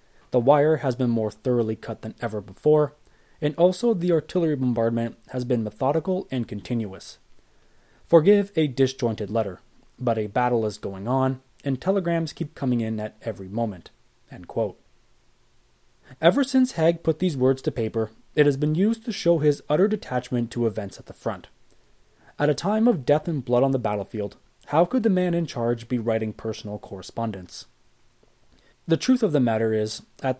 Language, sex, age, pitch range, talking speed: English, male, 20-39, 115-165 Hz, 175 wpm